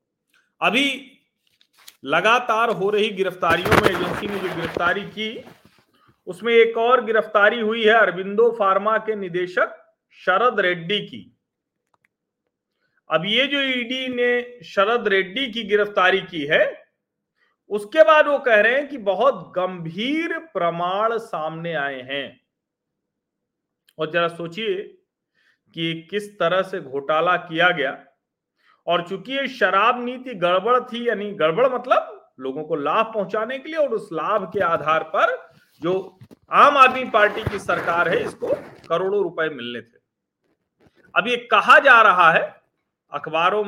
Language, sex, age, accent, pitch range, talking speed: Hindi, male, 40-59, native, 165-235 Hz, 135 wpm